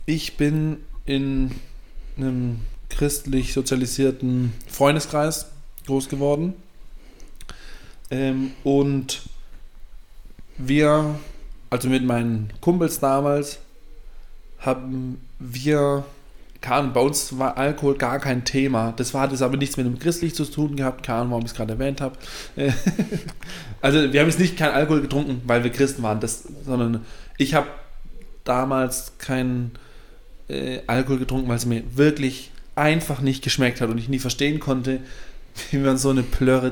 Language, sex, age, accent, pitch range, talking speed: English, male, 20-39, German, 125-145 Hz, 135 wpm